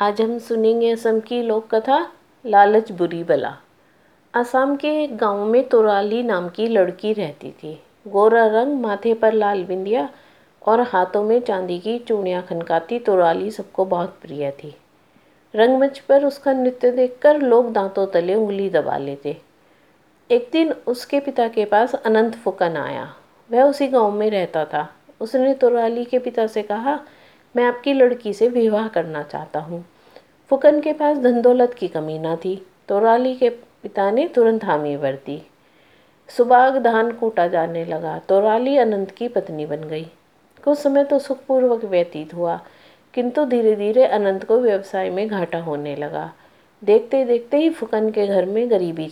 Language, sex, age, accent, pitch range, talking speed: Hindi, female, 50-69, native, 185-245 Hz, 155 wpm